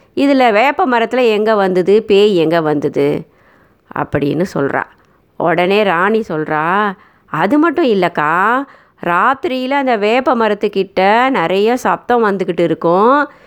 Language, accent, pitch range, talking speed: Tamil, native, 180-230 Hz, 105 wpm